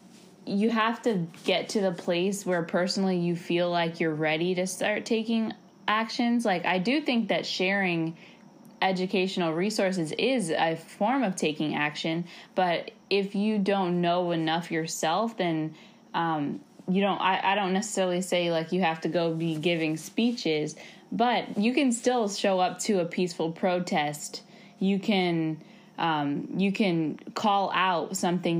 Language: English